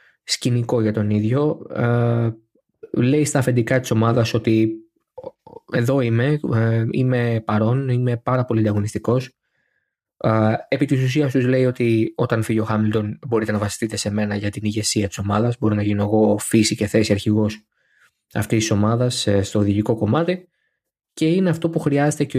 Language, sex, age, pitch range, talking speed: Greek, male, 20-39, 105-125 Hz, 155 wpm